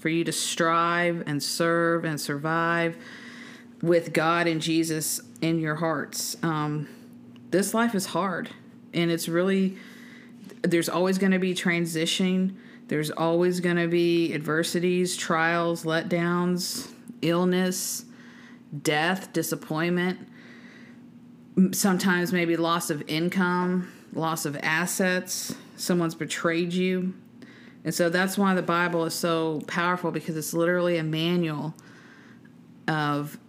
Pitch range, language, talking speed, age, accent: 160-185 Hz, English, 120 wpm, 40-59, American